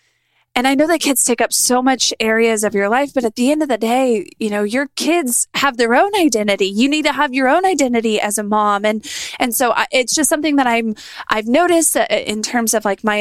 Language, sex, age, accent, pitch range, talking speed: English, female, 20-39, American, 215-270 Hz, 245 wpm